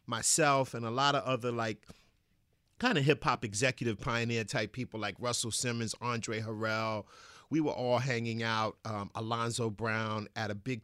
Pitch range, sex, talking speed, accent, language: 110-135 Hz, male, 170 wpm, American, English